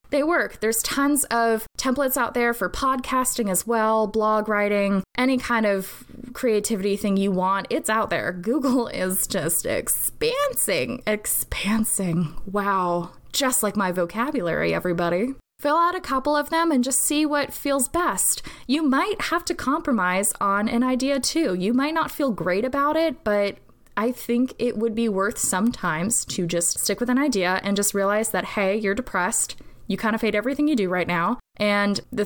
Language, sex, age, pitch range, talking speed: English, female, 10-29, 190-255 Hz, 175 wpm